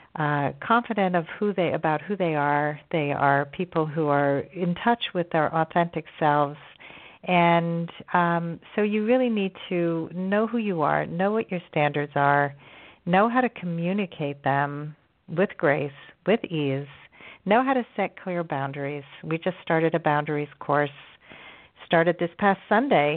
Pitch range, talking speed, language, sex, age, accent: 150-180 Hz, 160 wpm, English, female, 40-59, American